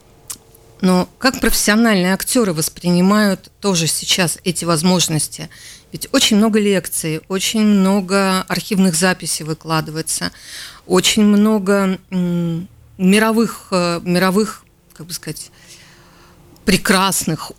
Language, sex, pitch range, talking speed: Russian, female, 165-200 Hz, 90 wpm